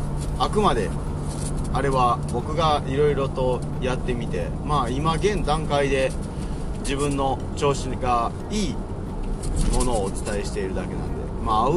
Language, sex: Japanese, male